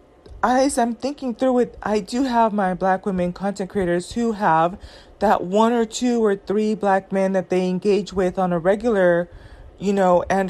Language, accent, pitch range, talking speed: English, American, 185-225 Hz, 190 wpm